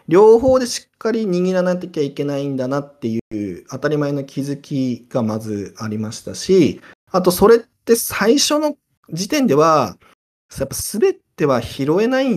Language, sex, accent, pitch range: Japanese, male, native, 145-230 Hz